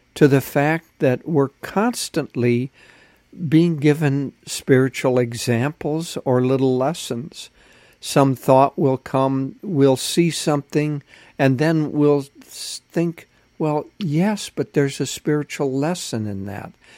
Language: English